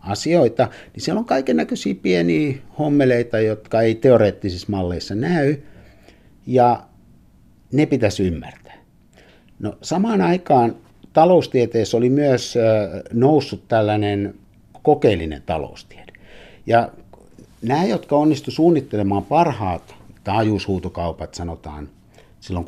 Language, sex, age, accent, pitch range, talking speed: Finnish, male, 60-79, native, 95-125 Hz, 95 wpm